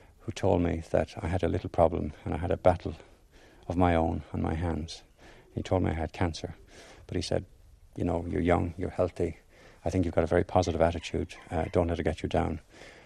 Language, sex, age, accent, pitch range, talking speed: English, male, 60-79, Irish, 85-115 Hz, 230 wpm